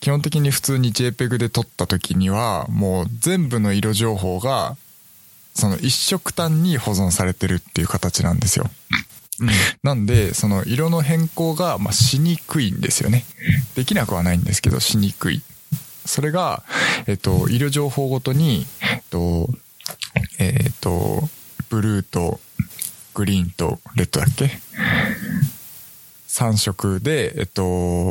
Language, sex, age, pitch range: Japanese, male, 20-39, 95-145 Hz